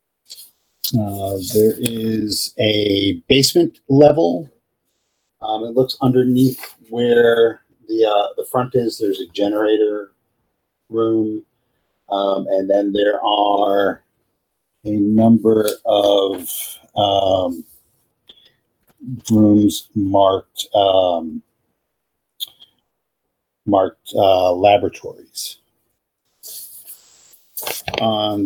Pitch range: 100-130 Hz